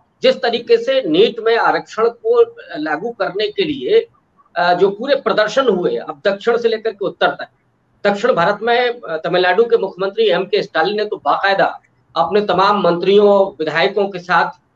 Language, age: Hindi, 50-69